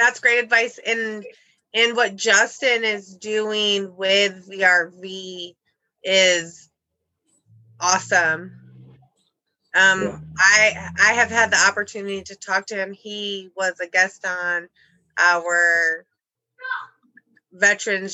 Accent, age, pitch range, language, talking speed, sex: American, 20-39, 180-220 Hz, English, 105 wpm, female